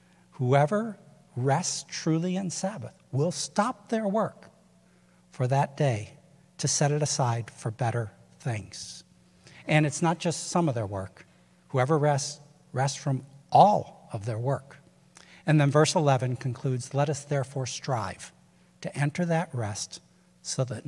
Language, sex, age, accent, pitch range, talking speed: English, male, 60-79, American, 115-155 Hz, 145 wpm